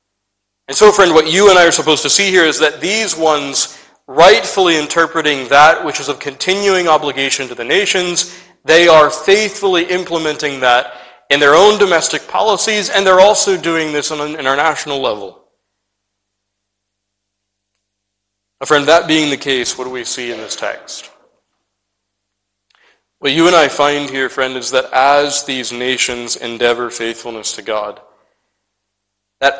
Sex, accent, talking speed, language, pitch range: male, American, 150 wpm, English, 100-145 Hz